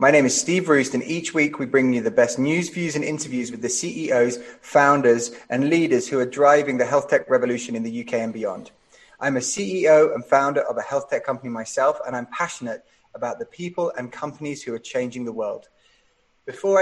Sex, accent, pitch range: male, British, 130-175 Hz